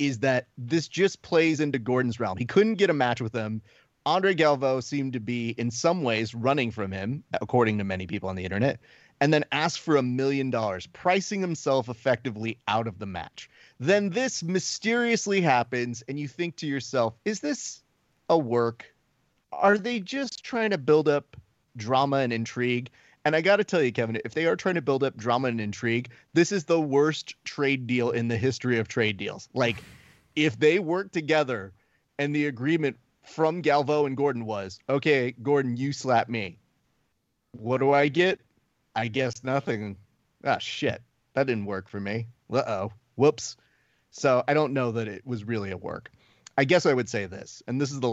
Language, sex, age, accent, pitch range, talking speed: English, male, 30-49, American, 115-150 Hz, 190 wpm